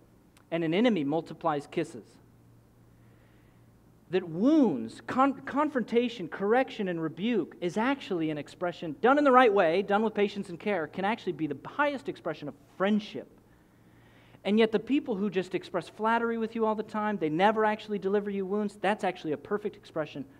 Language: English